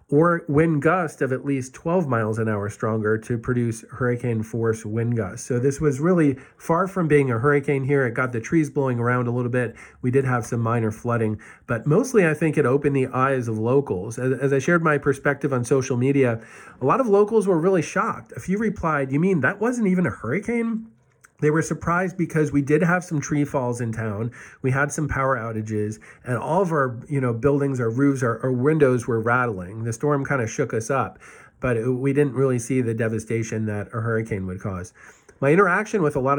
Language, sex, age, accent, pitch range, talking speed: English, male, 40-59, American, 120-155 Hz, 220 wpm